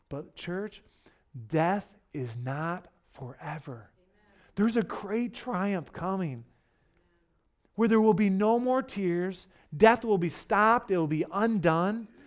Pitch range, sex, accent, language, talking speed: 190-250 Hz, male, American, English, 125 wpm